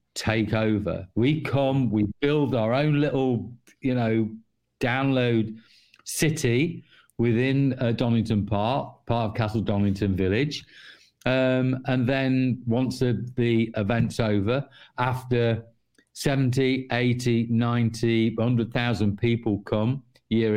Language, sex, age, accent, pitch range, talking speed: English, male, 50-69, British, 110-130 Hz, 110 wpm